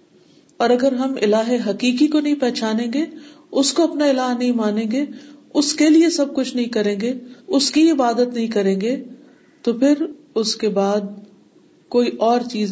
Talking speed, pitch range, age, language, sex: 180 wpm, 190-245 Hz, 50-69, Urdu, female